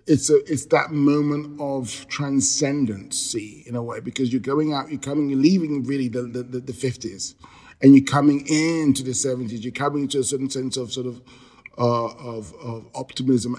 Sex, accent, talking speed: male, British, 180 wpm